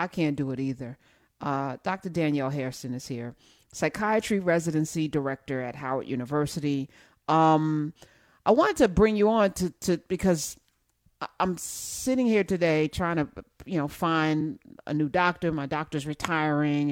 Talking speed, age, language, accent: 150 wpm, 40-59, English, American